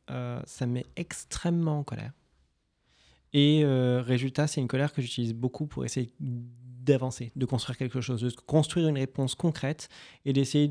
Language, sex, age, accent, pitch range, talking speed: French, male, 20-39, French, 120-140 Hz, 160 wpm